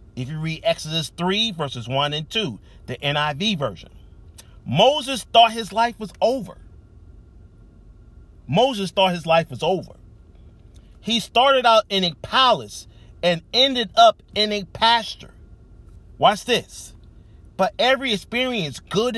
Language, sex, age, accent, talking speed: English, male, 40-59, American, 130 wpm